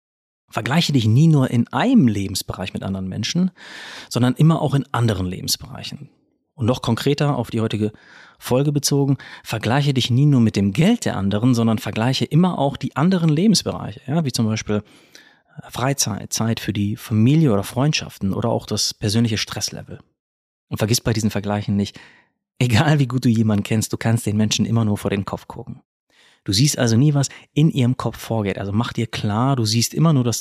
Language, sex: German, male